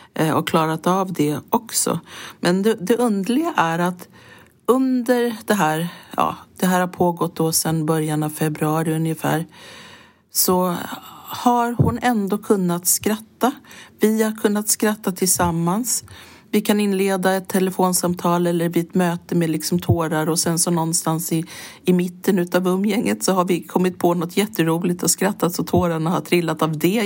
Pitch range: 165-205 Hz